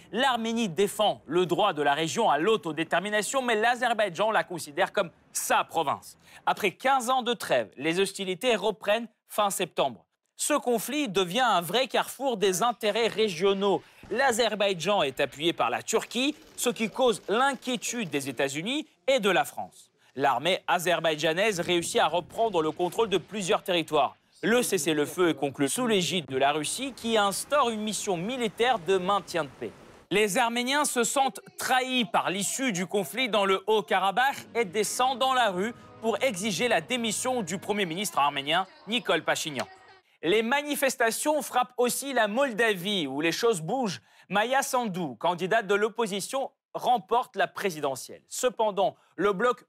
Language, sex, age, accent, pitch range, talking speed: French, male, 30-49, French, 185-245 Hz, 155 wpm